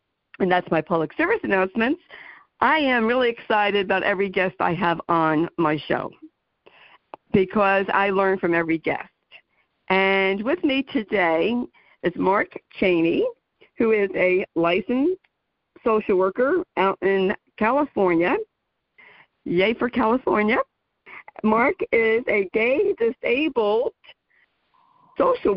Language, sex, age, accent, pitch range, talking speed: English, female, 50-69, American, 195-265 Hz, 115 wpm